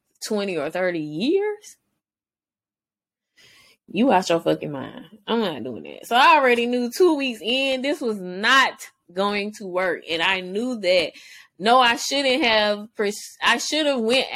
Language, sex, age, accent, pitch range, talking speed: English, female, 20-39, American, 170-230 Hz, 160 wpm